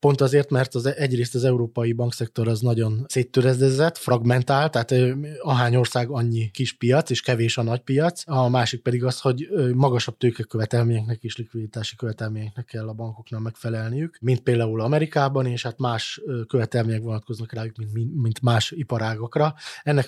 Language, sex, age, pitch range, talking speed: Hungarian, male, 20-39, 115-135 Hz, 155 wpm